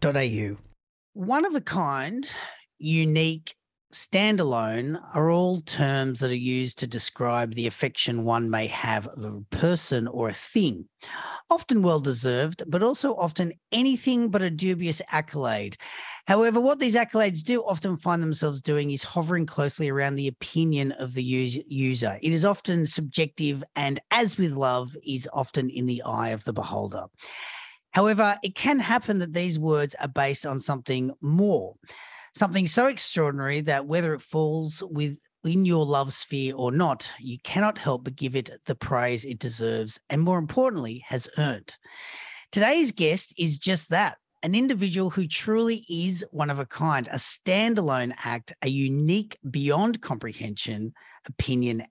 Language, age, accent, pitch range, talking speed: English, 40-59, Australian, 130-190 Hz, 150 wpm